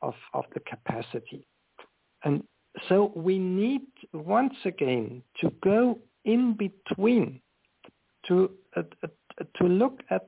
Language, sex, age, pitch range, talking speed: English, male, 60-79, 175-230 Hz, 115 wpm